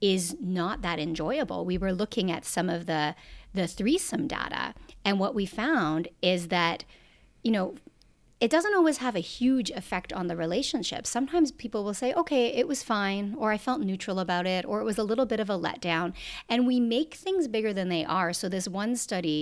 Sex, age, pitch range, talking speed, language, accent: female, 40-59, 160-230 Hz, 205 wpm, English, American